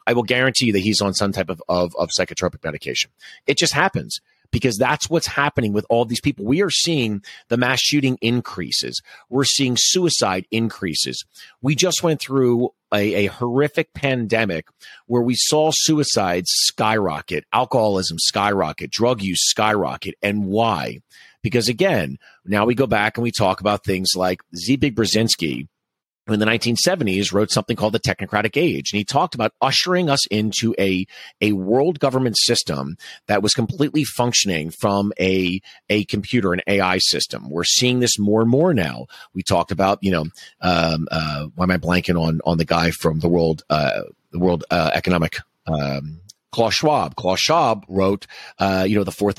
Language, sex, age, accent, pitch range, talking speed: English, male, 40-59, American, 95-125 Hz, 175 wpm